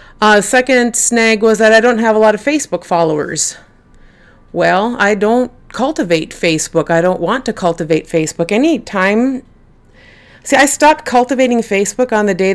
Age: 30-49